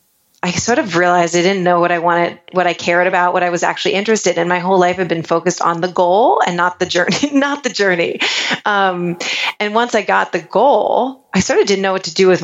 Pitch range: 175-205 Hz